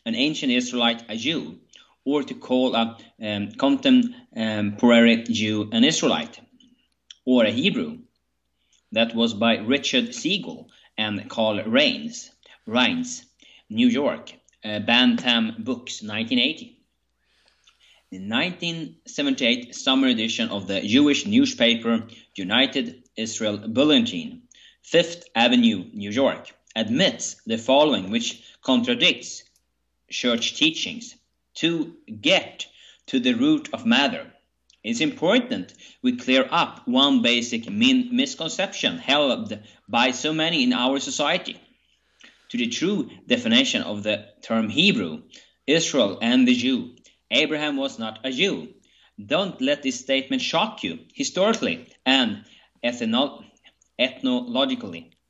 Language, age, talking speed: English, 30-49, 110 wpm